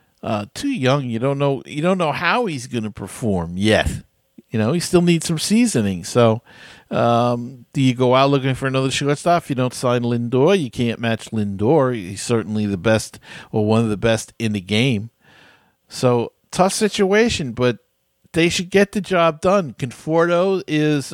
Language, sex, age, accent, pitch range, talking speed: English, male, 50-69, American, 115-150 Hz, 180 wpm